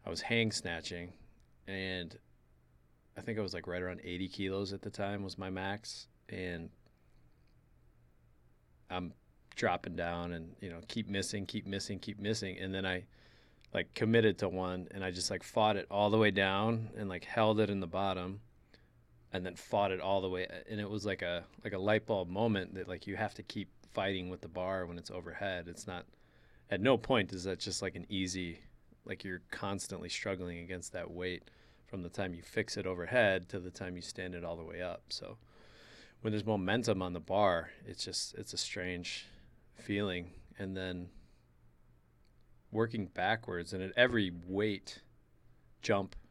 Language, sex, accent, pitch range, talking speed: English, male, American, 85-100 Hz, 185 wpm